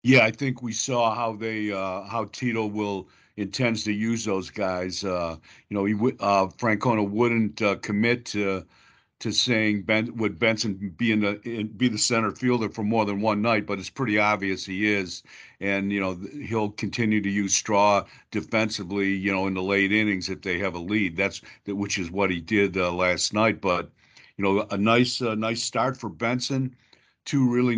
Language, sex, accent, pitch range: English, male, American, 100-120 Hz